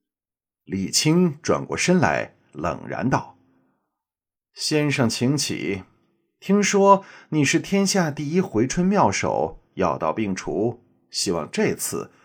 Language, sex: Chinese, male